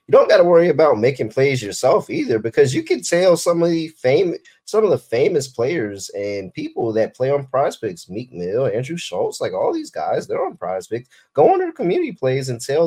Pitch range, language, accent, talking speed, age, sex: 100-165 Hz, English, American, 215 wpm, 30-49, male